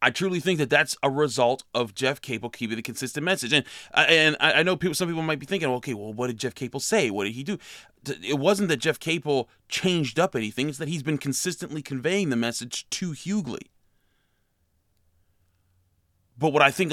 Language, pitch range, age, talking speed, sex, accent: English, 120-150 Hz, 30-49, 210 wpm, male, American